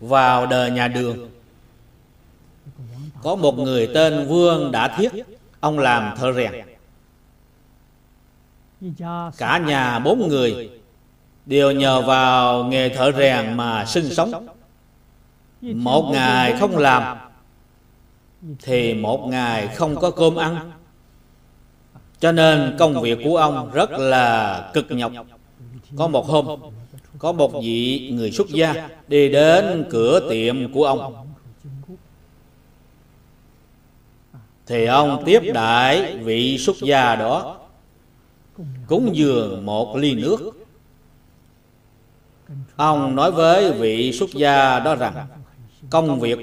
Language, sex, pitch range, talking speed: Vietnamese, male, 120-155 Hz, 110 wpm